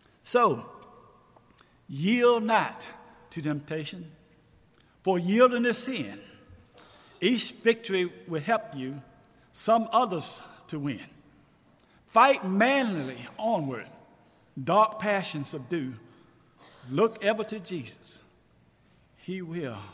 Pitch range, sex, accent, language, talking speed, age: 145-215 Hz, male, American, English, 90 wpm, 50-69